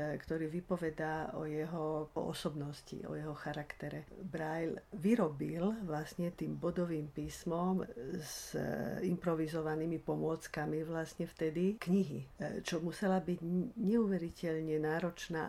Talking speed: 95 wpm